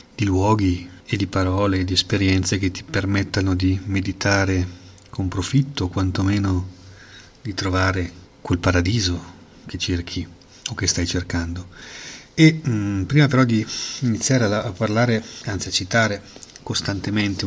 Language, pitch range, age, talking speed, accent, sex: Italian, 95-110 Hz, 40-59, 135 wpm, native, male